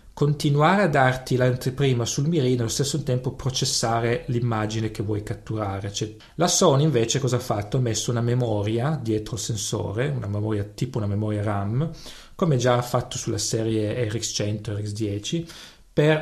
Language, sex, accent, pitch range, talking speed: English, male, Italian, 110-140 Hz, 165 wpm